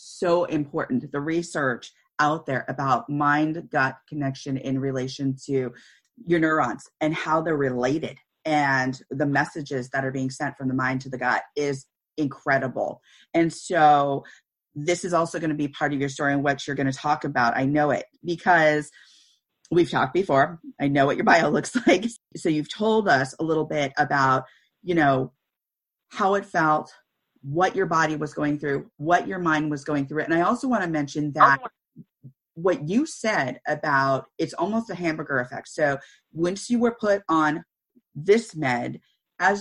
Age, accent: 30-49, American